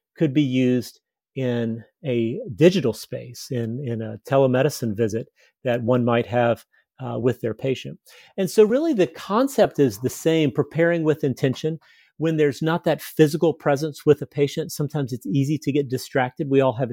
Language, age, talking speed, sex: English, 40-59, 175 wpm, male